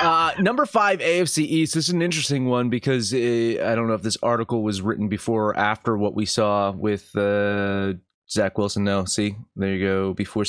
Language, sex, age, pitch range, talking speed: English, male, 20-39, 105-140 Hz, 205 wpm